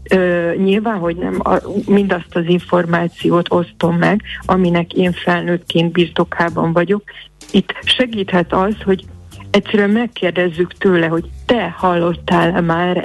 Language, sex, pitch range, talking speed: Hungarian, female, 175-195 Hz, 120 wpm